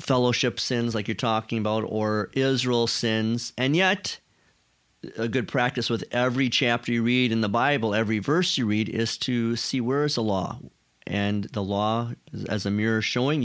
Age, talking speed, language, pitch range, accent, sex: 40-59, 180 wpm, English, 110-130 Hz, American, male